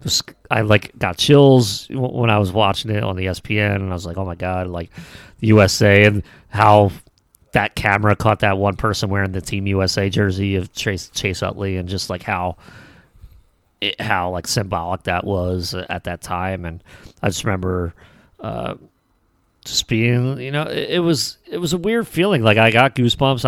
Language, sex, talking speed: English, male, 185 wpm